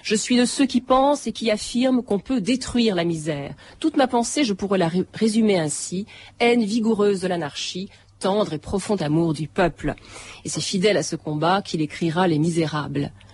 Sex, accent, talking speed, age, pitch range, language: female, French, 190 wpm, 40-59, 170-230 Hz, French